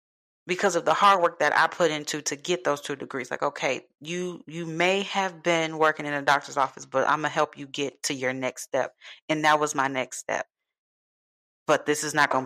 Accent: American